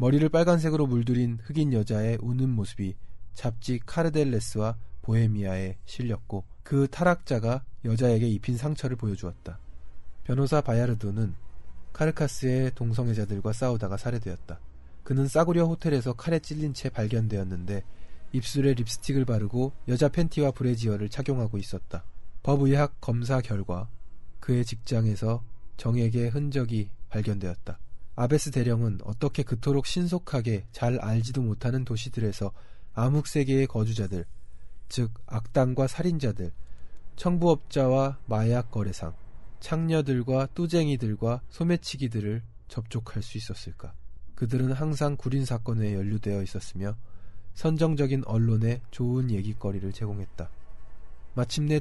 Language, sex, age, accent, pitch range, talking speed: English, male, 20-39, Korean, 105-135 Hz, 95 wpm